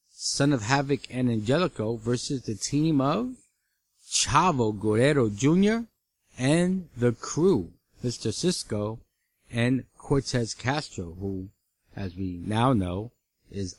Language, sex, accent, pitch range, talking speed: English, male, American, 100-135 Hz, 115 wpm